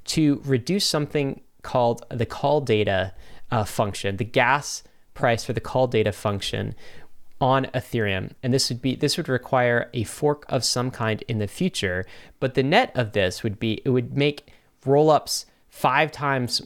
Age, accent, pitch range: 20-39, American, 110-135 Hz